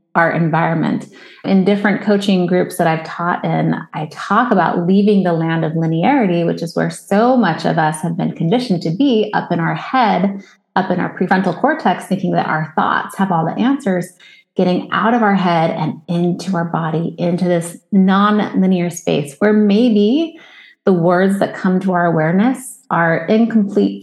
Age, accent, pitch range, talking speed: 30-49, American, 170-215 Hz, 175 wpm